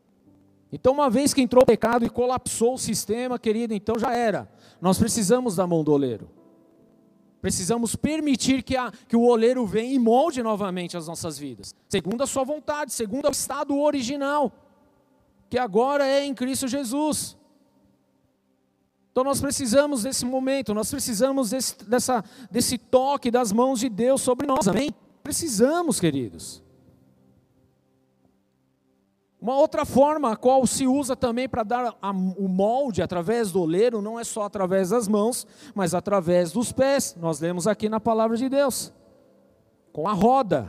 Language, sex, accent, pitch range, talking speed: Portuguese, male, Brazilian, 175-255 Hz, 155 wpm